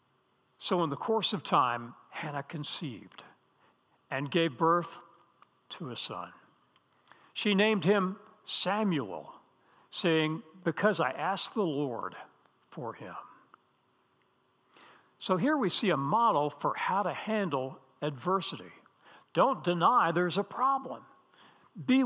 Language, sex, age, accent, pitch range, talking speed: English, male, 60-79, American, 155-210 Hz, 115 wpm